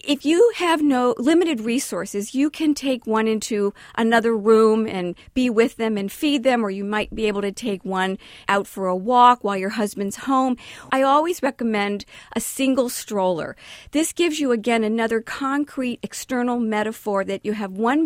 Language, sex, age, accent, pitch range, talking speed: English, female, 50-69, American, 205-260 Hz, 180 wpm